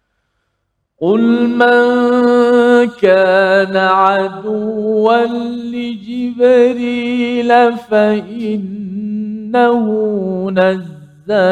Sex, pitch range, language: male, 180-235 Hz, Malayalam